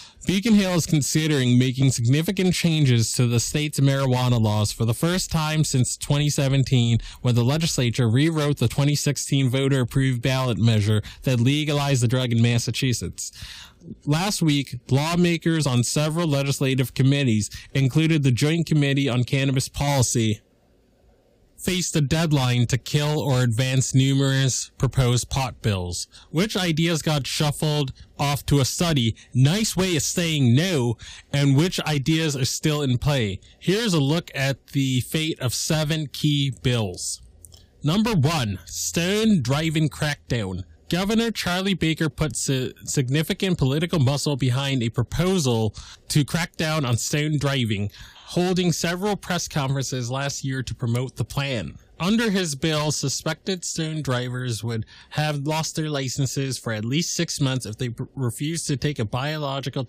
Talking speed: 140 wpm